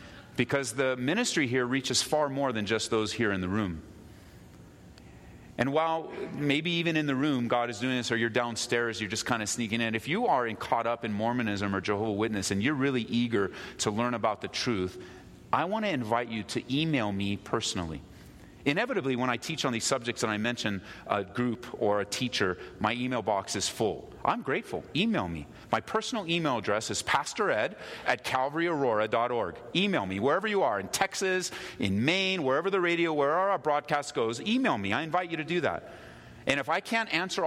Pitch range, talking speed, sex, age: 115-185 Hz, 200 wpm, male, 30-49